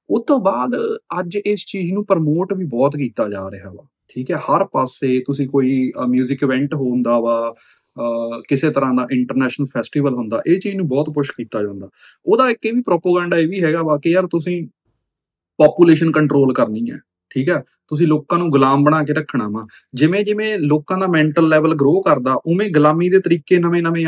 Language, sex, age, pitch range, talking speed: Punjabi, male, 20-39, 130-185 Hz, 185 wpm